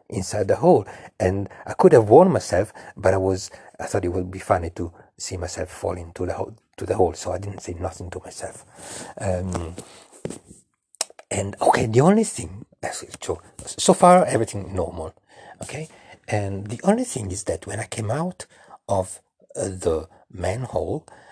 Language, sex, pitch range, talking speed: English, male, 95-145 Hz, 170 wpm